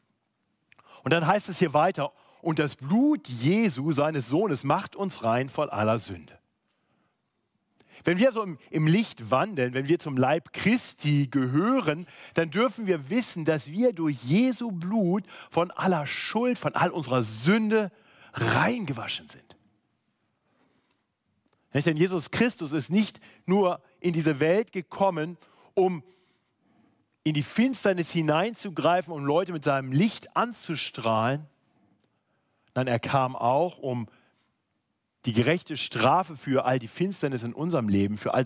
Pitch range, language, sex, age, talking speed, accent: 130-185 Hz, German, male, 40-59, 140 wpm, German